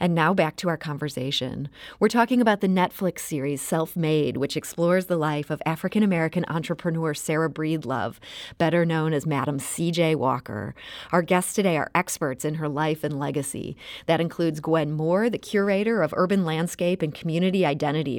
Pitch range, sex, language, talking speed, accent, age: 150-185 Hz, female, English, 170 wpm, American, 30-49